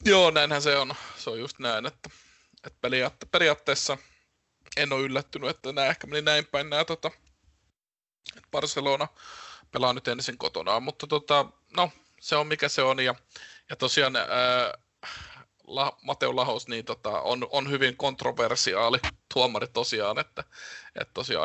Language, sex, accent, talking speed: Finnish, male, native, 150 wpm